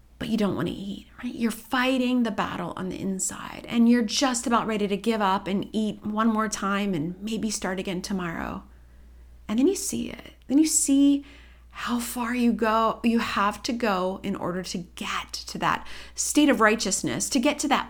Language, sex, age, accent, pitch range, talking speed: English, female, 30-49, American, 185-245 Hz, 205 wpm